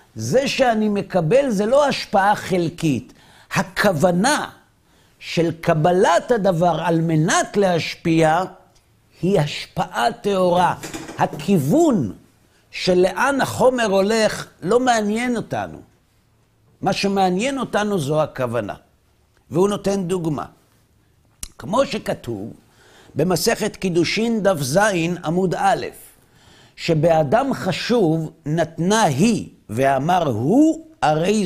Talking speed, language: 90 wpm, Hebrew